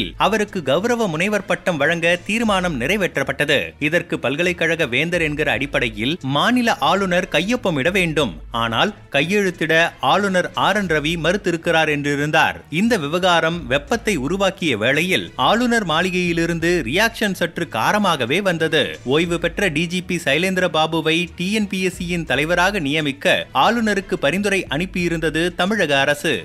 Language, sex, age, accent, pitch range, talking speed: Tamil, male, 30-49, native, 155-190 Hz, 105 wpm